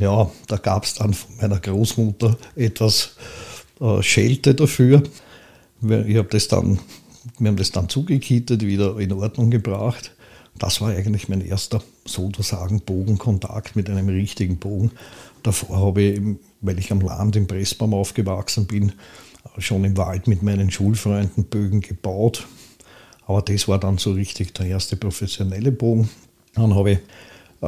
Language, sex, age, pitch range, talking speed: German, male, 50-69, 100-110 Hz, 140 wpm